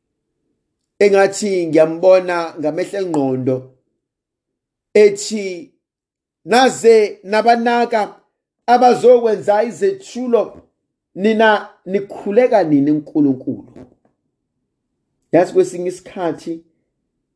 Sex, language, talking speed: male, English, 65 wpm